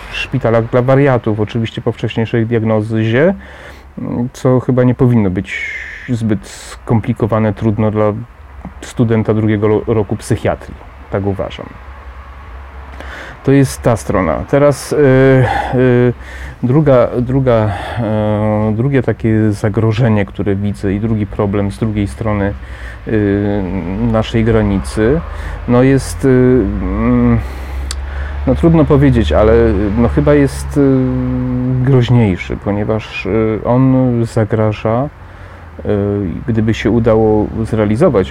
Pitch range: 100-115 Hz